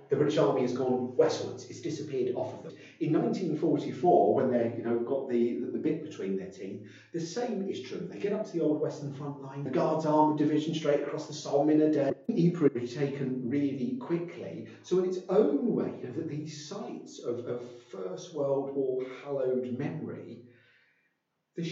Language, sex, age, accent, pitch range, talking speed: English, male, 40-59, British, 115-165 Hz, 195 wpm